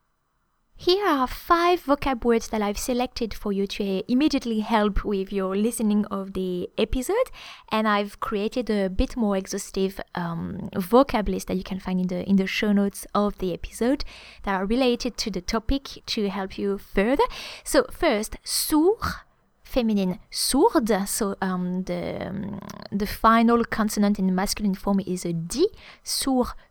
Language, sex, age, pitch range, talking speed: English, female, 20-39, 195-240 Hz, 160 wpm